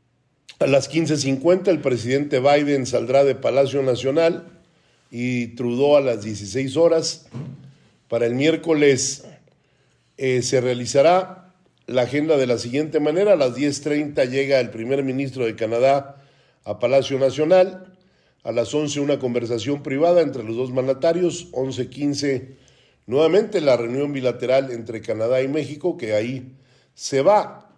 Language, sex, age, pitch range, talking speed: Spanish, male, 50-69, 125-150 Hz, 135 wpm